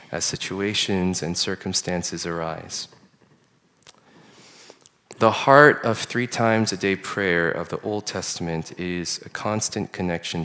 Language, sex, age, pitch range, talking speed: English, male, 30-49, 95-115 Hz, 120 wpm